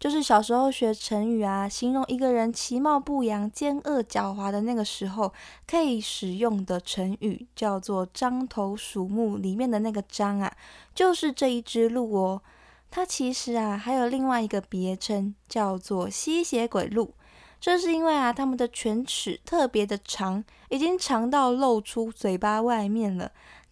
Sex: female